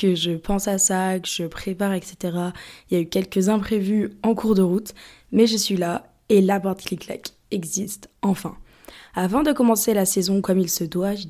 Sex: female